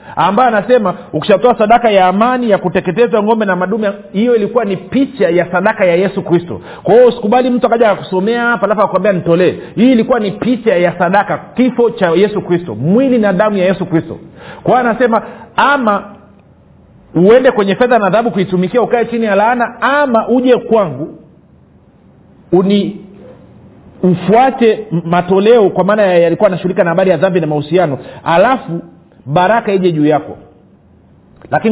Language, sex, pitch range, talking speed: Swahili, male, 170-225 Hz, 155 wpm